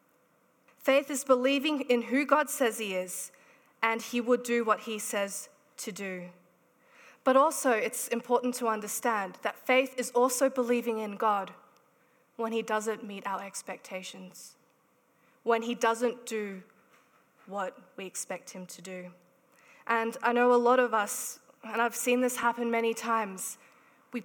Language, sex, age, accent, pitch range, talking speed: English, female, 20-39, Australian, 225-280 Hz, 155 wpm